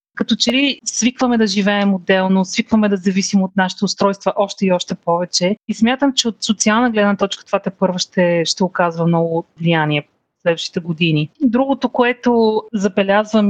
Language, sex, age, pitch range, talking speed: Bulgarian, female, 30-49, 180-210 Hz, 170 wpm